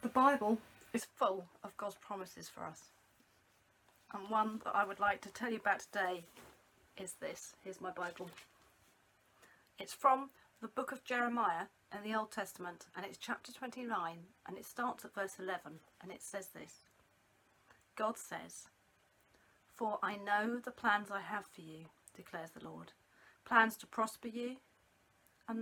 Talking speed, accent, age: 160 wpm, British, 40-59